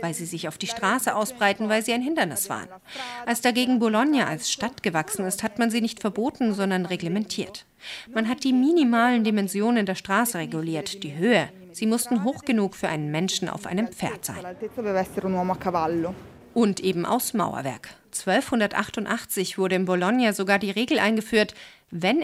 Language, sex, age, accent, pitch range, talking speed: German, female, 40-59, German, 180-230 Hz, 160 wpm